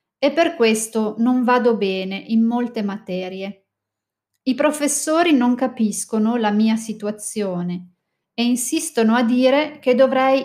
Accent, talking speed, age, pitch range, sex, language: native, 125 wpm, 30-49, 195-250 Hz, female, Italian